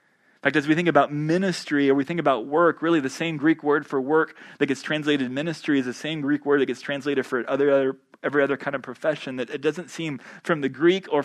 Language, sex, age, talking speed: English, male, 30-49, 250 wpm